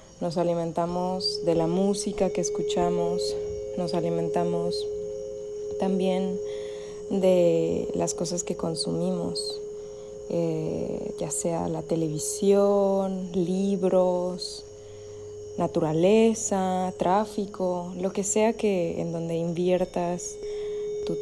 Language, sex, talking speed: Spanish, female, 90 wpm